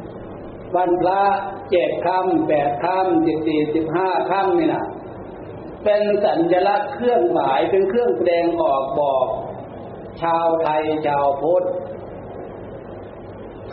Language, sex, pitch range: Thai, male, 155-190 Hz